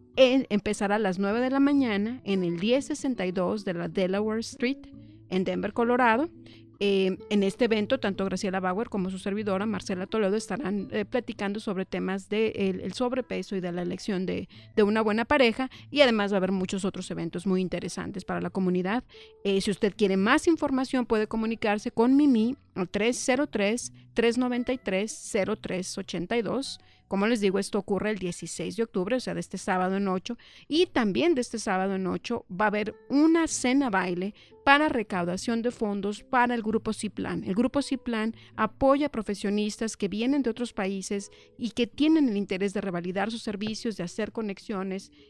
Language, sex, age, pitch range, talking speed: English, female, 40-59, 190-245 Hz, 175 wpm